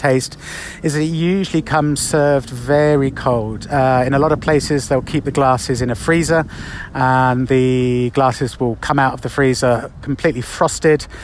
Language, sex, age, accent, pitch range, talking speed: English, male, 30-49, British, 115-145 Hz, 175 wpm